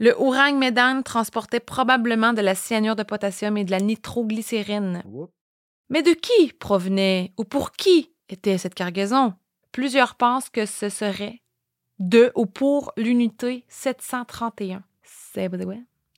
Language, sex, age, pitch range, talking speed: French, female, 20-39, 195-235 Hz, 125 wpm